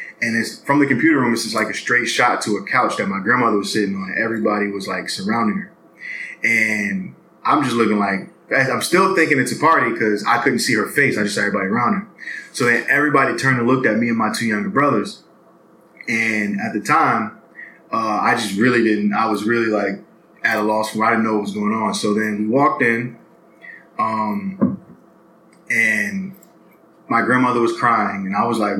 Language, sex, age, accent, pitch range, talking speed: English, male, 20-39, American, 105-125 Hz, 215 wpm